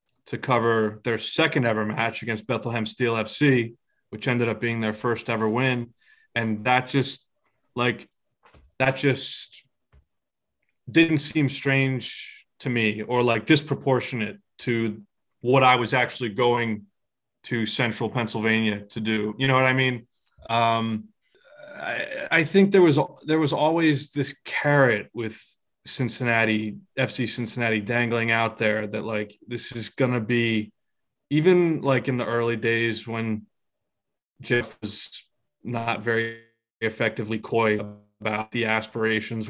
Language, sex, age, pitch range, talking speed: English, male, 20-39, 110-130 Hz, 135 wpm